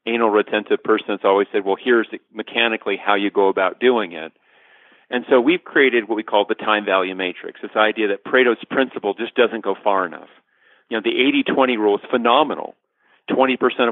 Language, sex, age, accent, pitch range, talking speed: English, male, 40-59, American, 105-130 Hz, 180 wpm